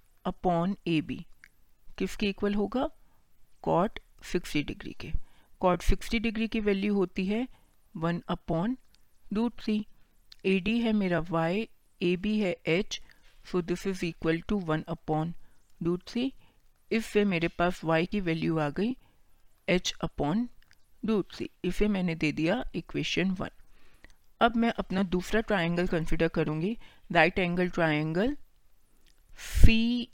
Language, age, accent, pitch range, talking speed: Hindi, 50-69, native, 165-210 Hz, 125 wpm